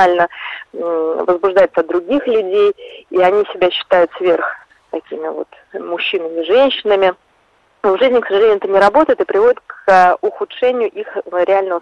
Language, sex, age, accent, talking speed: Russian, female, 20-39, native, 140 wpm